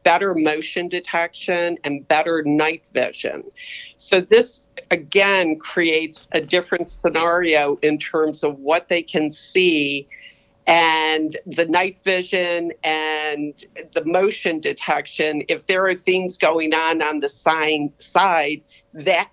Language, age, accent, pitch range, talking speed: English, 50-69, American, 150-180 Hz, 120 wpm